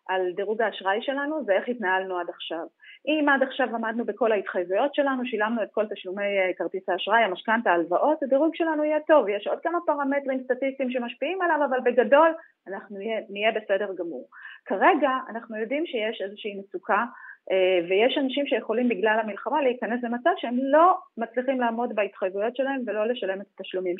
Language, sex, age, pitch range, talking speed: Hebrew, female, 30-49, 200-290 Hz, 160 wpm